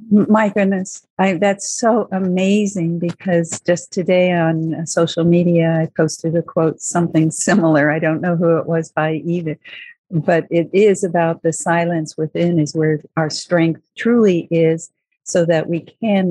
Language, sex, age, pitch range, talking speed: English, female, 50-69, 160-180 Hz, 160 wpm